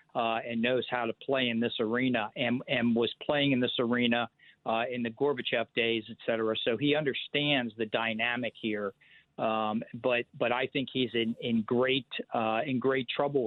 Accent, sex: American, male